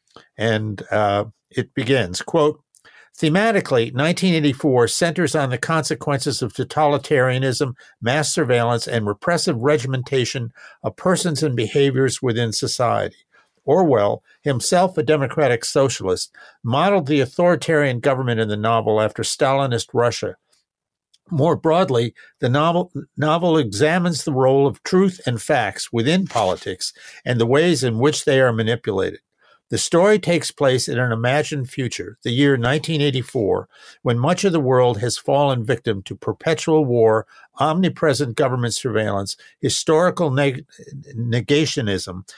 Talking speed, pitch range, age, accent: 125 wpm, 120-155 Hz, 50-69, American